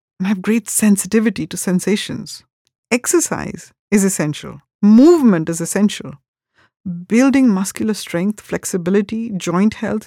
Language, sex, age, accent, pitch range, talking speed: English, female, 50-69, Indian, 185-235 Hz, 100 wpm